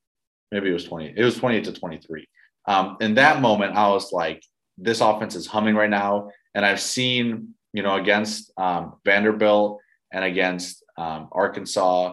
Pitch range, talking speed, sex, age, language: 90-110 Hz, 170 wpm, male, 20-39, English